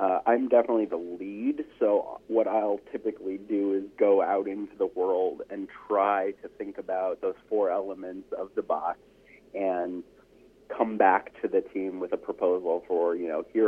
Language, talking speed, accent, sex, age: English, 175 wpm, American, male, 30-49